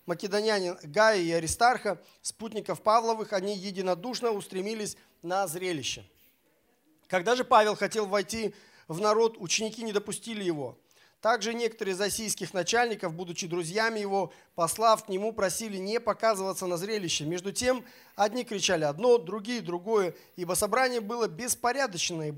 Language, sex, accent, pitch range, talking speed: Russian, male, native, 185-225 Hz, 130 wpm